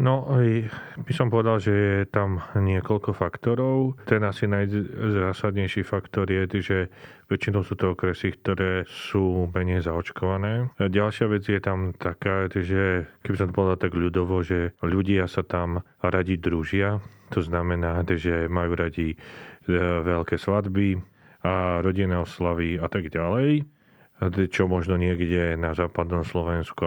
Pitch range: 90-100 Hz